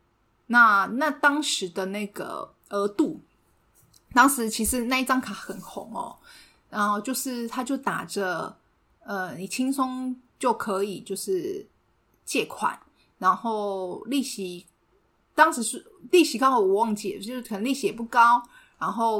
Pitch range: 195-250 Hz